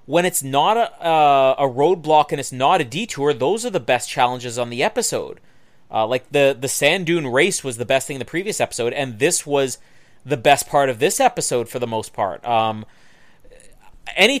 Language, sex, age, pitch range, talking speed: English, male, 30-49, 125-155 Hz, 210 wpm